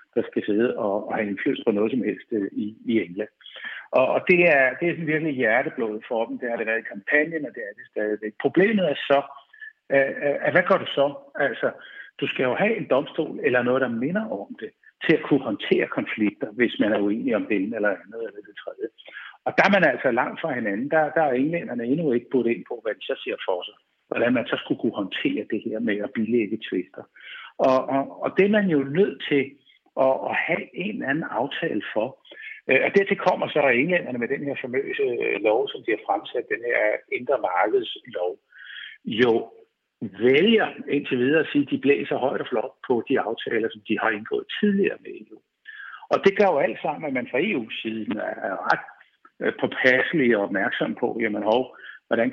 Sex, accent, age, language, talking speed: male, Danish, 60-79, English, 215 wpm